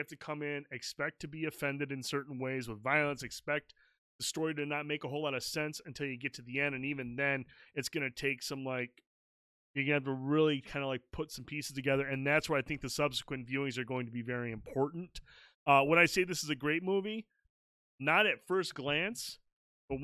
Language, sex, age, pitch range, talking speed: English, male, 30-49, 130-170 Hz, 235 wpm